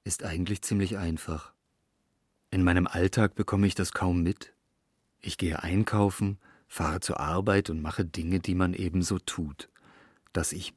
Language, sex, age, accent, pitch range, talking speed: German, male, 40-59, German, 80-105 Hz, 150 wpm